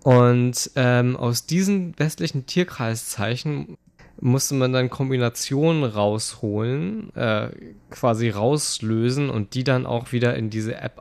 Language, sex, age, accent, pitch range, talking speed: German, male, 20-39, German, 115-135 Hz, 120 wpm